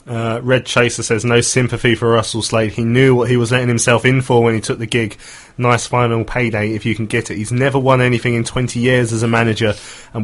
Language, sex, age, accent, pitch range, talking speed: English, male, 20-39, British, 110-130 Hz, 245 wpm